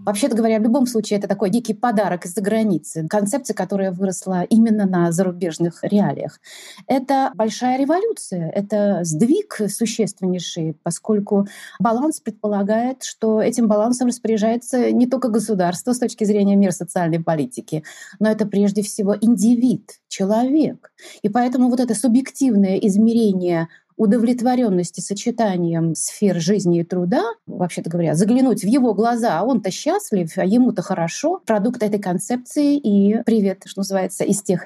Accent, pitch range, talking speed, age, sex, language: native, 190-245 Hz, 135 wpm, 30-49, female, Russian